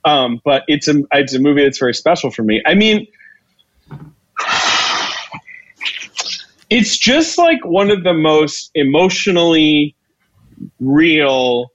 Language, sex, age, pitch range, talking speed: English, male, 30-49, 115-155 Hz, 110 wpm